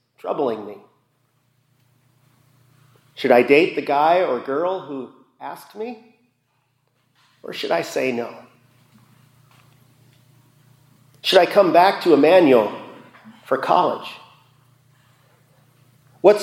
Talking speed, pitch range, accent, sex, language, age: 95 wpm, 130-170 Hz, American, male, English, 40-59